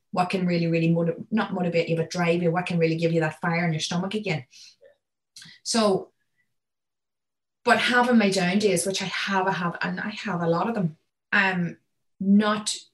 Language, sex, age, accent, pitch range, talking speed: English, female, 20-39, Irish, 165-200 Hz, 195 wpm